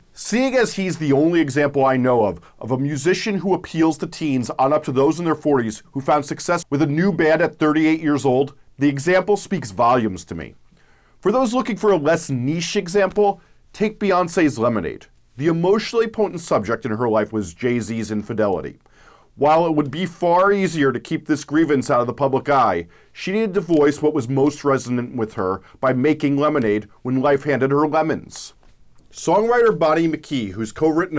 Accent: American